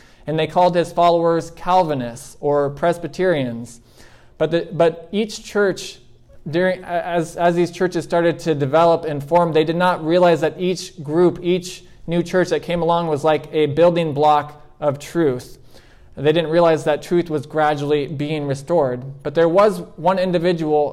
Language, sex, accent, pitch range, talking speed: English, male, American, 145-180 Hz, 165 wpm